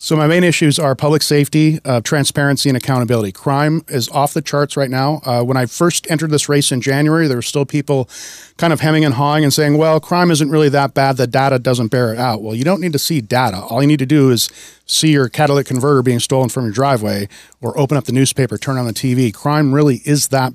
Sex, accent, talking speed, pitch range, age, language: male, American, 250 wpm, 125-145 Hz, 40-59, English